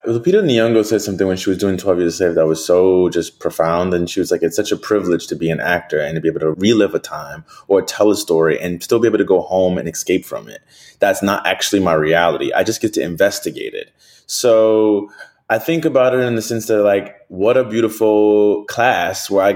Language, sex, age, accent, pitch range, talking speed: English, male, 20-39, American, 95-120 Hz, 240 wpm